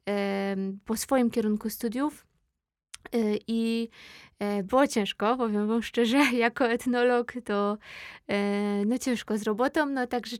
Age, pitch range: 20-39, 210-250 Hz